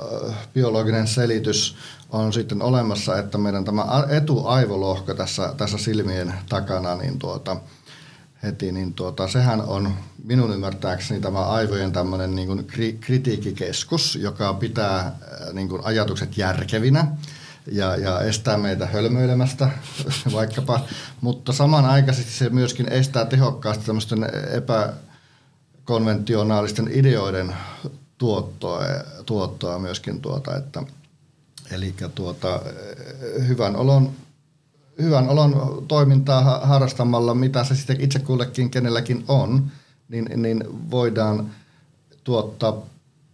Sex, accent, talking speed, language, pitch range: male, native, 95 wpm, Finnish, 105-140 Hz